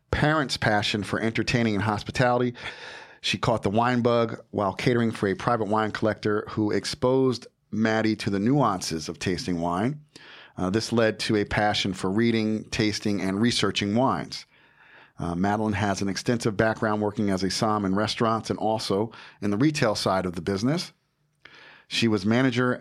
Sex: male